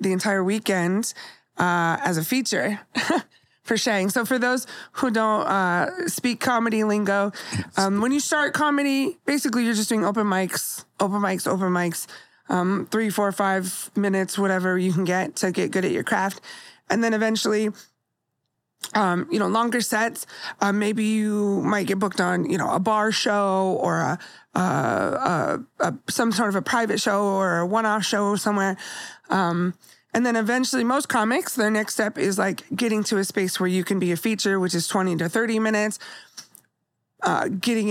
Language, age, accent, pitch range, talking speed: English, 30-49, American, 180-225 Hz, 180 wpm